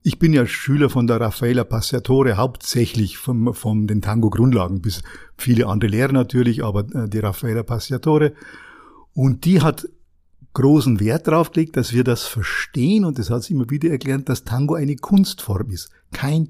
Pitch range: 120-155 Hz